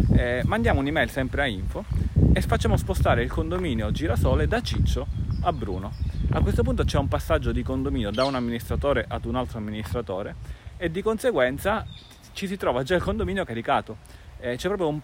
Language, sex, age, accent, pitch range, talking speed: Italian, male, 30-49, native, 115-150 Hz, 180 wpm